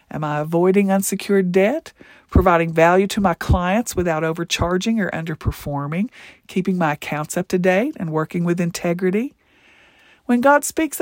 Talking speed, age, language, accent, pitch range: 145 wpm, 50-69, English, American, 175-225 Hz